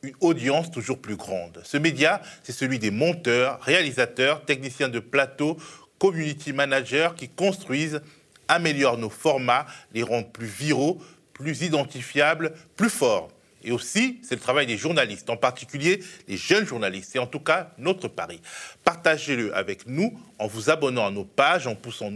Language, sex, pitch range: French, male, 120-170 Hz